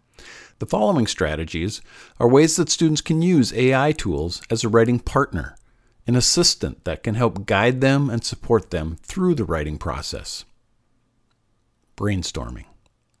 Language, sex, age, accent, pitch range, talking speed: English, male, 50-69, American, 105-150 Hz, 135 wpm